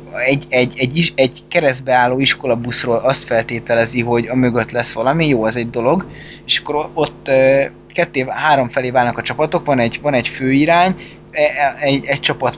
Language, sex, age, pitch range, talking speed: Hungarian, male, 20-39, 125-150 Hz, 175 wpm